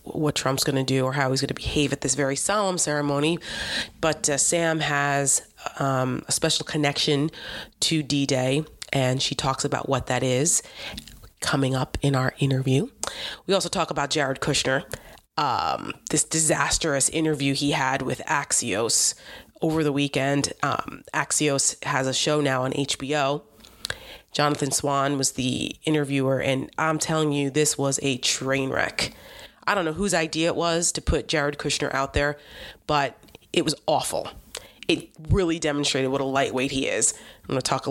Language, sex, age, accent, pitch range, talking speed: English, female, 30-49, American, 135-155 Hz, 170 wpm